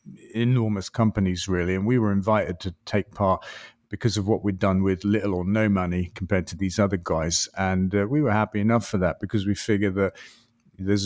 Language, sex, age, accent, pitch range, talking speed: English, male, 40-59, British, 95-110 Hz, 205 wpm